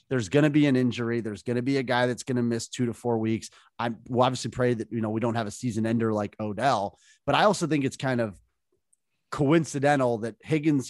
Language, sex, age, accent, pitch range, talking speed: English, male, 30-49, American, 115-145 Hz, 240 wpm